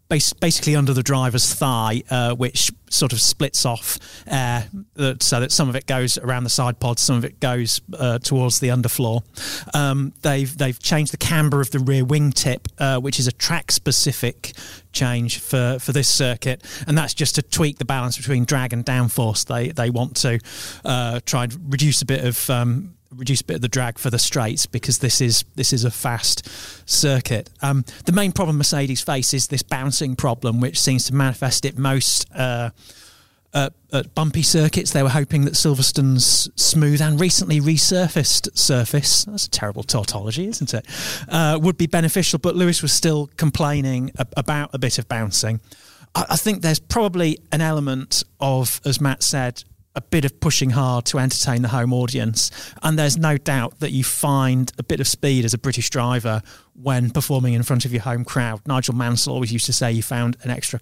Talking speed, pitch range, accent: 195 wpm, 120-145 Hz, British